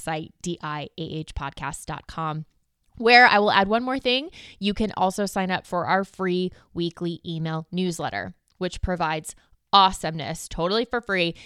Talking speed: 135 wpm